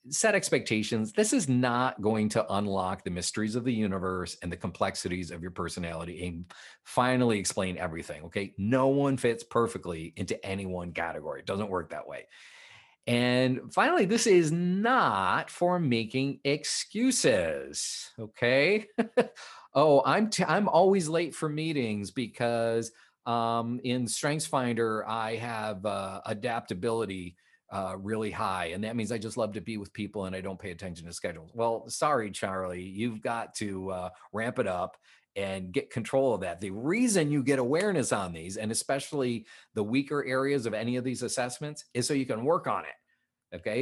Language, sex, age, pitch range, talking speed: English, male, 40-59, 100-140 Hz, 165 wpm